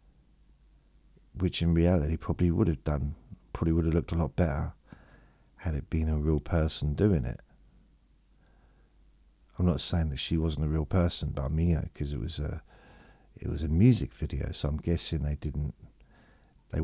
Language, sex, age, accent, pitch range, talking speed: English, male, 50-69, British, 75-85 Hz, 170 wpm